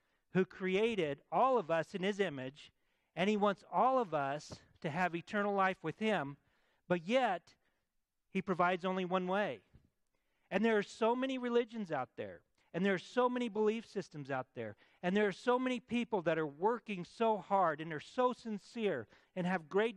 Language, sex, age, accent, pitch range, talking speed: English, male, 50-69, American, 160-215 Hz, 185 wpm